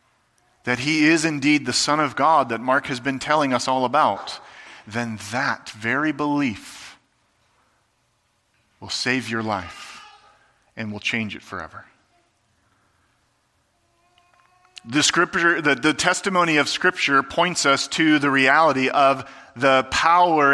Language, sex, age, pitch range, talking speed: English, male, 40-59, 130-175 Hz, 130 wpm